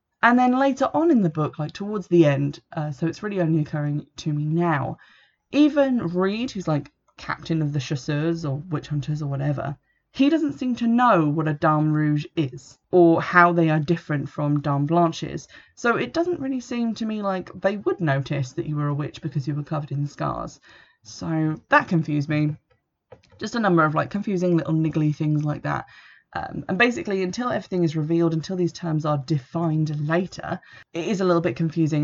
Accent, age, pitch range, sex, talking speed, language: British, 20-39, 150-180 Hz, female, 200 wpm, English